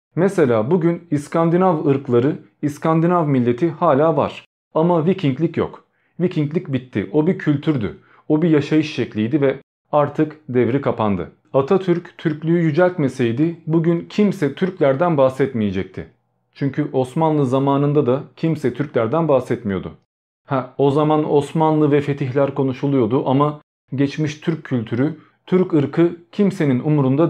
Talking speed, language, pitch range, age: 115 wpm, Turkish, 130-160 Hz, 40-59